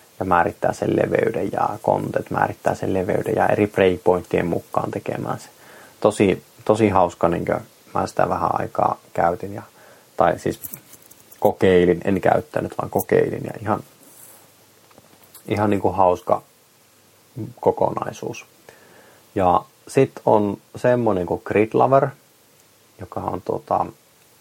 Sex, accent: male, native